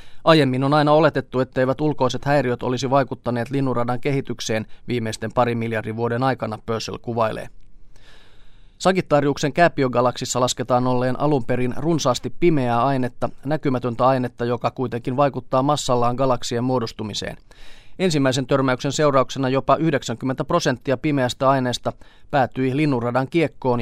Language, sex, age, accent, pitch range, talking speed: Finnish, male, 30-49, native, 120-140 Hz, 115 wpm